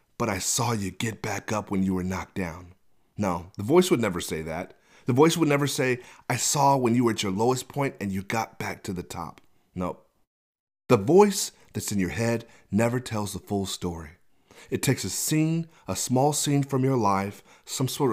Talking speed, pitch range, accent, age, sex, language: 210 wpm, 105-145 Hz, American, 30-49, male, English